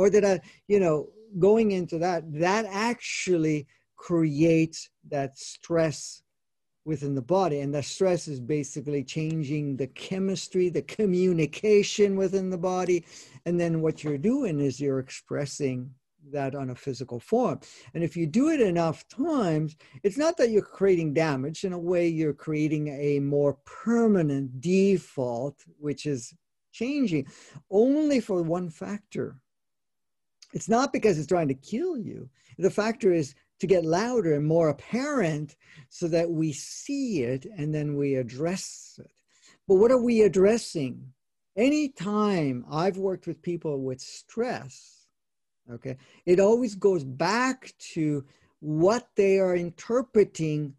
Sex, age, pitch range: male, 50-69, 145-195 Hz